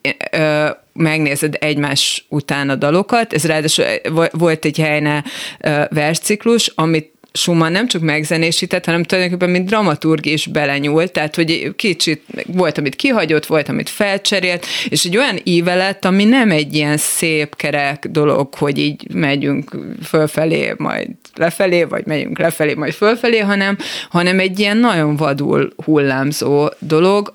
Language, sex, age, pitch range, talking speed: Hungarian, female, 30-49, 145-180 Hz, 140 wpm